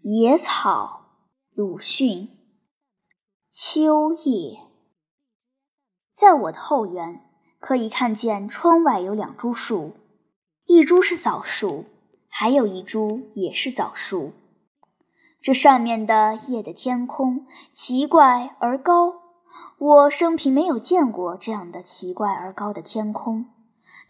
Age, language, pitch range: 10-29, Chinese, 210-285 Hz